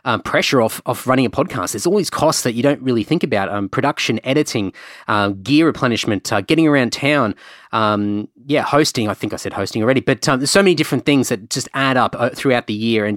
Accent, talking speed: Australian, 235 wpm